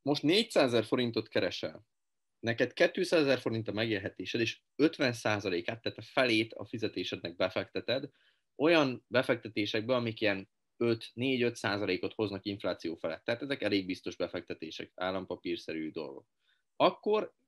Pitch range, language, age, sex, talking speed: 100-135 Hz, Hungarian, 30-49, male, 115 wpm